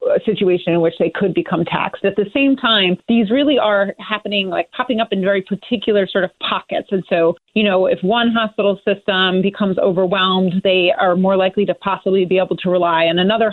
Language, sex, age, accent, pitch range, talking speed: English, female, 30-49, American, 175-210 Hz, 210 wpm